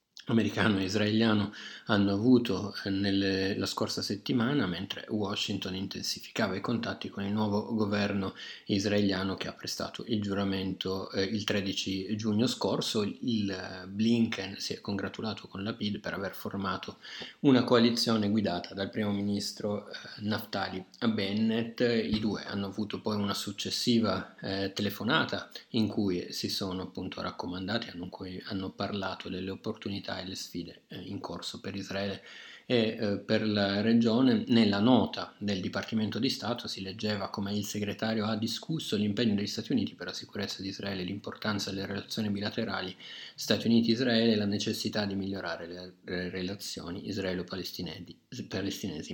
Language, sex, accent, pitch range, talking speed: Italian, male, native, 95-110 Hz, 145 wpm